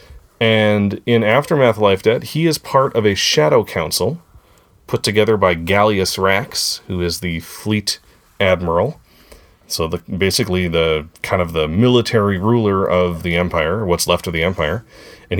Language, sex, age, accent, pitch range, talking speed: English, male, 30-49, American, 85-105 Hz, 155 wpm